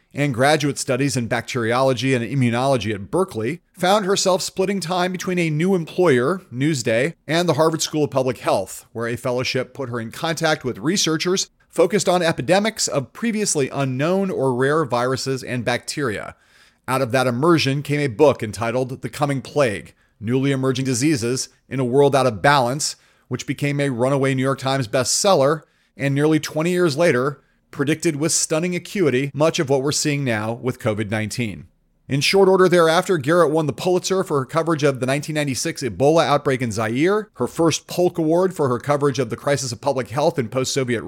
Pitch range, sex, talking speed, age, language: 125-165 Hz, male, 180 wpm, 40-59, English